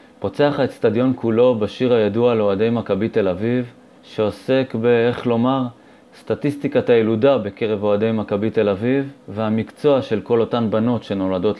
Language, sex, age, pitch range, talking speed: Hebrew, male, 30-49, 105-130 Hz, 135 wpm